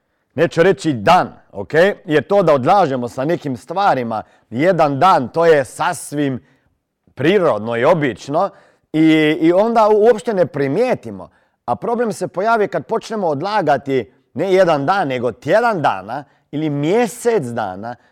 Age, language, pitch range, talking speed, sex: 40-59, Croatian, 140-200 Hz, 135 wpm, male